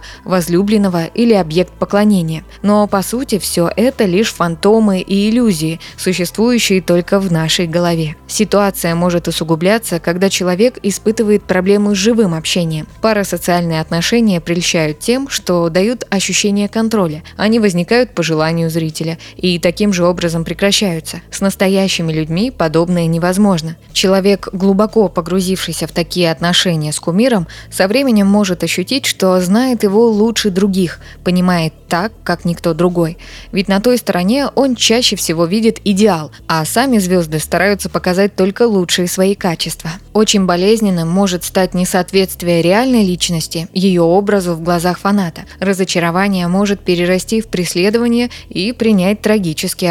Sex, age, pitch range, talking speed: female, 20-39, 170-205 Hz, 135 wpm